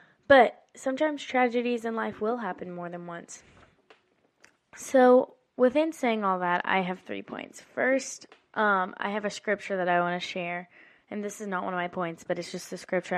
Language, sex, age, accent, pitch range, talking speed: English, female, 20-39, American, 180-215 Hz, 195 wpm